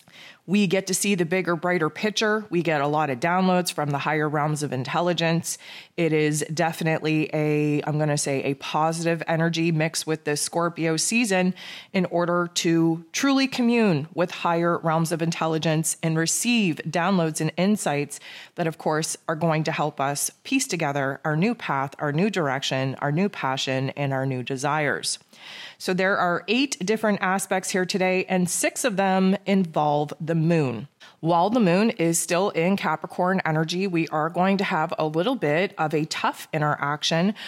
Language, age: English, 20-39